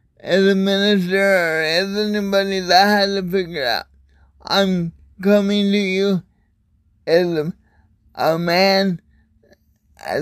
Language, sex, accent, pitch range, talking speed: English, male, American, 175-200 Hz, 125 wpm